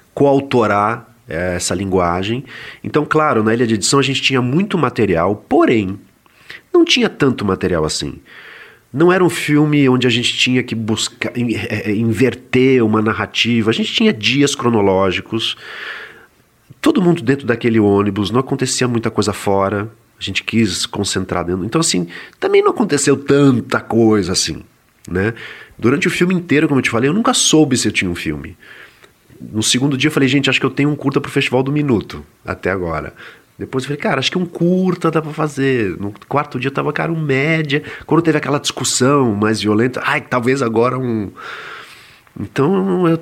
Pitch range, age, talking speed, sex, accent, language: 100-145 Hz, 40-59, 180 wpm, male, Brazilian, Portuguese